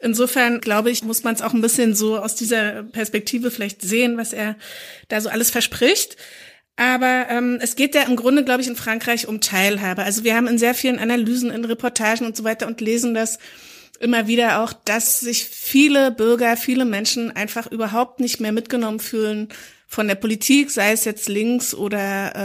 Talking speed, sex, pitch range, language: 190 wpm, female, 210-245 Hz, German